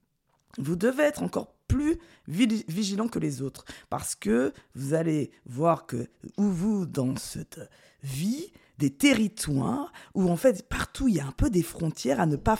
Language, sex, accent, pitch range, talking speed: French, female, French, 140-225 Hz, 170 wpm